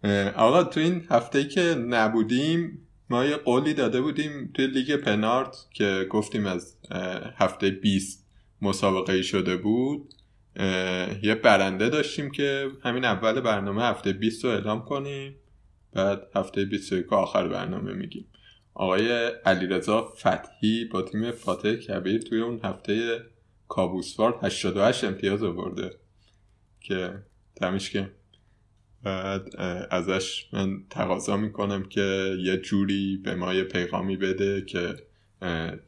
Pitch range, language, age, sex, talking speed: 95-115 Hz, Persian, 20-39, male, 120 wpm